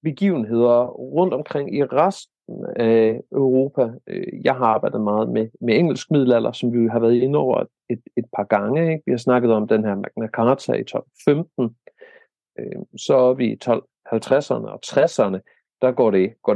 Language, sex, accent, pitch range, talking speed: Danish, male, native, 115-150 Hz, 170 wpm